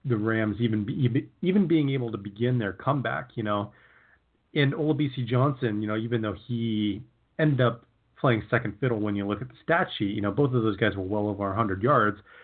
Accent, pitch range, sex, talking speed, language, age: American, 110-140 Hz, male, 215 wpm, English, 30-49